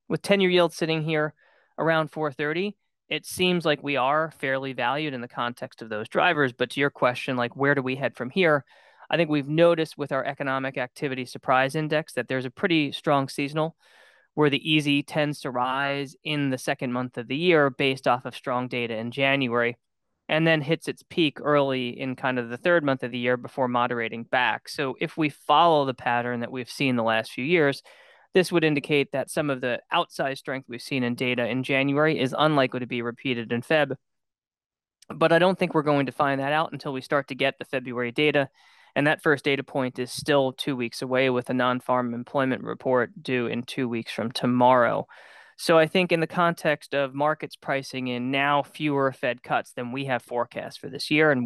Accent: American